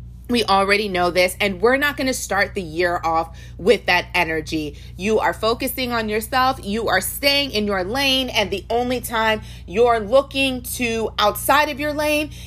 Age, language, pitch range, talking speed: 30-49, English, 180-240 Hz, 185 wpm